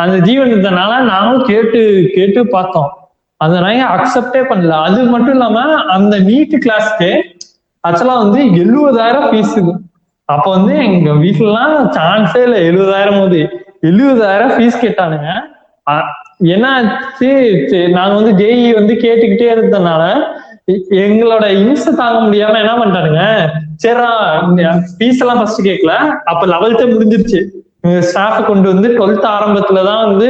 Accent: native